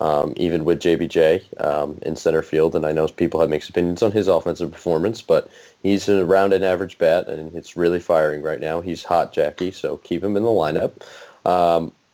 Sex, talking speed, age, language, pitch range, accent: male, 205 wpm, 20-39, English, 80-100 Hz, American